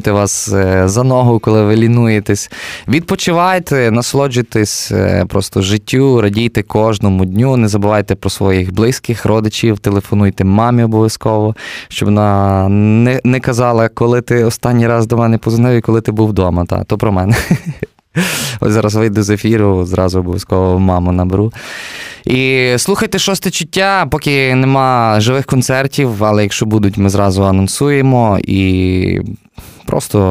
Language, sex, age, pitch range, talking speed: Ukrainian, male, 20-39, 100-125 Hz, 135 wpm